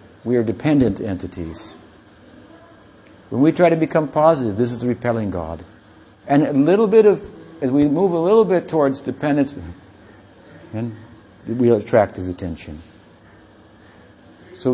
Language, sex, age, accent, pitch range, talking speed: English, male, 60-79, American, 105-145 Hz, 140 wpm